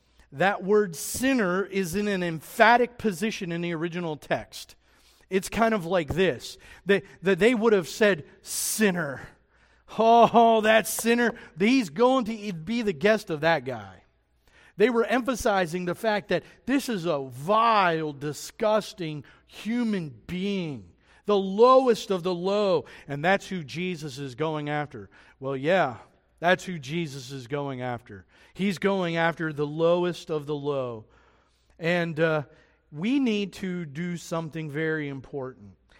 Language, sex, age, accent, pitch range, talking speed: English, male, 50-69, American, 160-220 Hz, 140 wpm